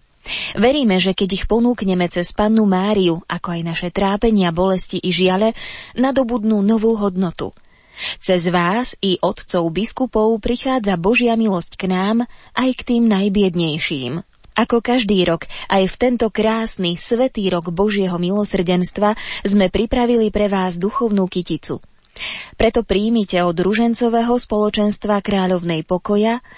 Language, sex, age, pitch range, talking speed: Slovak, female, 20-39, 180-225 Hz, 125 wpm